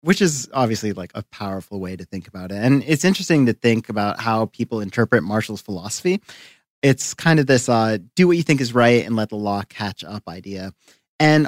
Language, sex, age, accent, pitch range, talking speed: English, male, 30-49, American, 110-150 Hz, 215 wpm